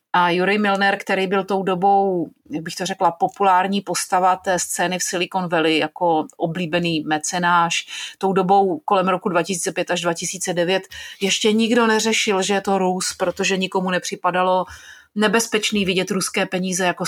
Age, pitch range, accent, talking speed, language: 30-49, 180-220 Hz, native, 150 wpm, Czech